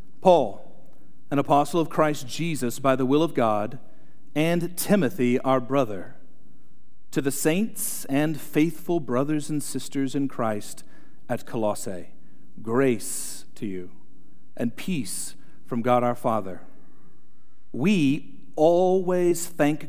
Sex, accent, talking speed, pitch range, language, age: male, American, 120 wpm, 130-175 Hz, English, 40-59